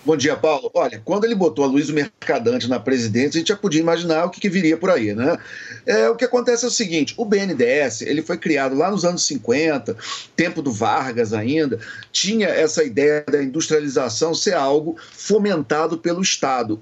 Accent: Brazilian